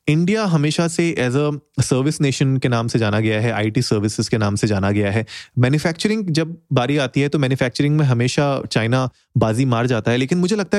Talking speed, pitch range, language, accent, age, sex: 210 wpm, 125-155 Hz, Hindi, native, 30-49, male